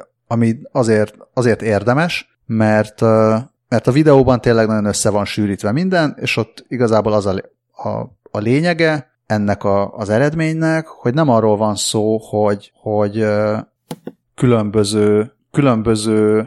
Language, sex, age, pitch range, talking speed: Hungarian, male, 30-49, 105-125 Hz, 120 wpm